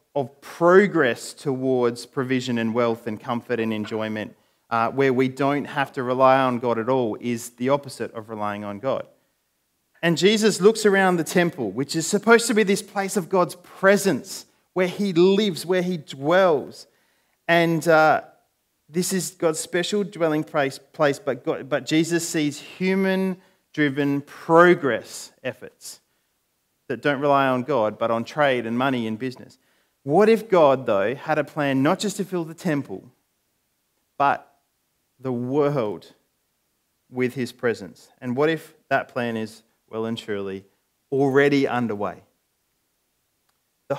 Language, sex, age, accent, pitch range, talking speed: English, male, 30-49, Australian, 120-170 Hz, 150 wpm